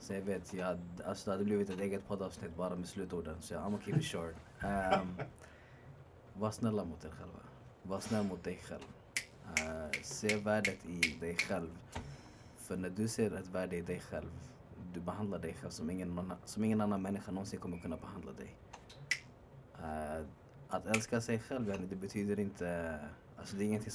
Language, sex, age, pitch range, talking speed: Swedish, male, 20-39, 90-110 Hz, 185 wpm